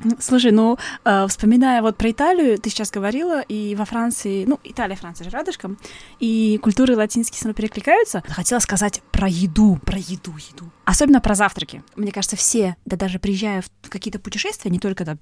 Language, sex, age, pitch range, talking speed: Russian, female, 20-39, 180-235 Hz, 180 wpm